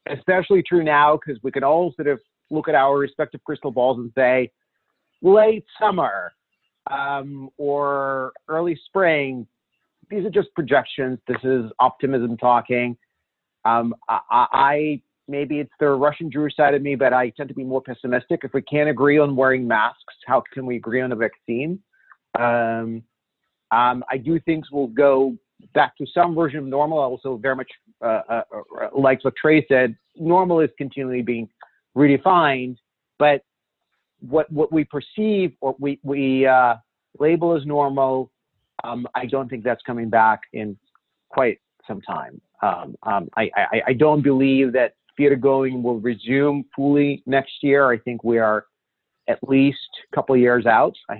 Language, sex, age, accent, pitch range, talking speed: English, male, 40-59, American, 125-150 Hz, 165 wpm